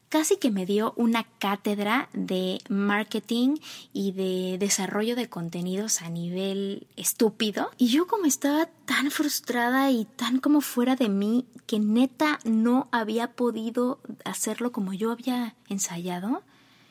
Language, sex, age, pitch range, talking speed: Spanish, female, 20-39, 190-240 Hz, 135 wpm